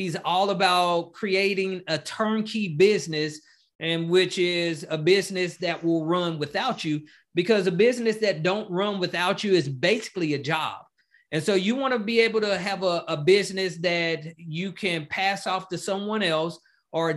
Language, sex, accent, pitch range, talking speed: English, male, American, 165-210 Hz, 170 wpm